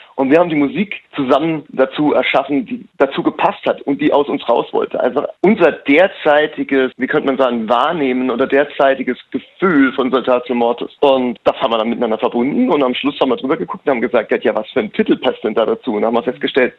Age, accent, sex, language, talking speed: 30-49, German, male, German, 220 wpm